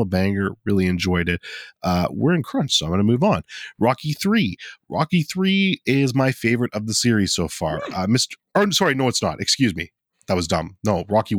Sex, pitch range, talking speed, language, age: male, 90-130 Hz, 210 wpm, English, 30-49